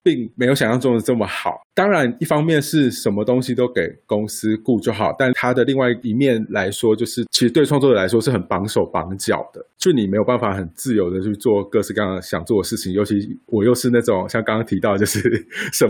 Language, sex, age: Chinese, male, 20-39